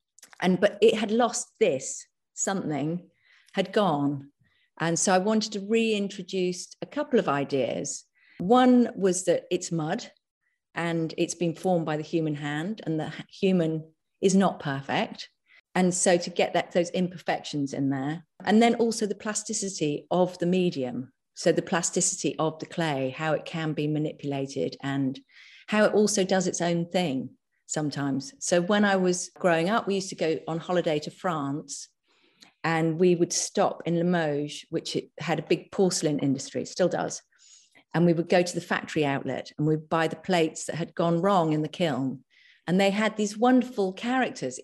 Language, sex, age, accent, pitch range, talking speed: English, female, 50-69, British, 155-200 Hz, 175 wpm